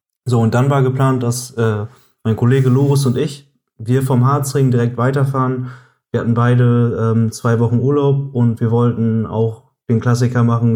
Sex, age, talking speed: male, 20-39, 175 wpm